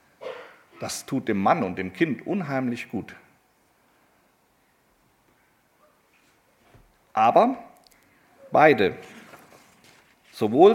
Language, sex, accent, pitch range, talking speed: German, male, German, 115-155 Hz, 65 wpm